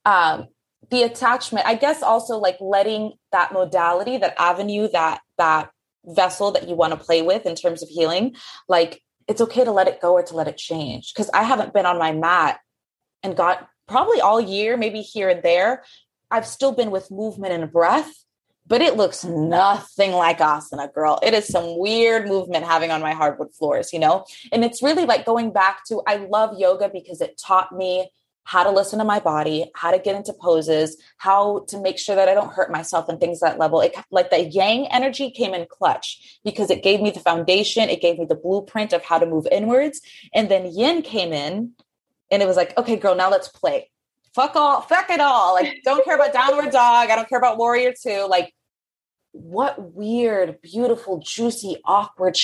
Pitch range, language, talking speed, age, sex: 175-230 Hz, English, 205 wpm, 20-39, female